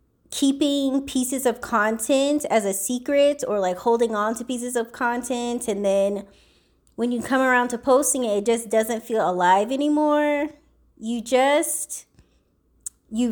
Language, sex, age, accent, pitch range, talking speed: English, female, 20-39, American, 210-270 Hz, 150 wpm